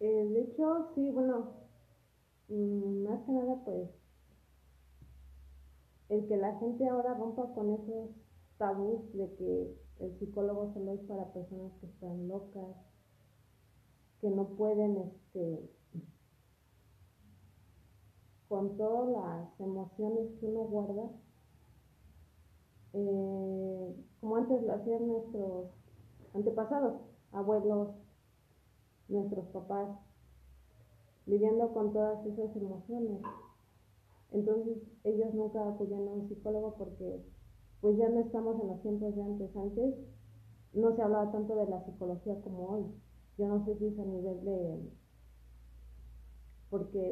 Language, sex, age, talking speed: Spanish, female, 30-49, 115 wpm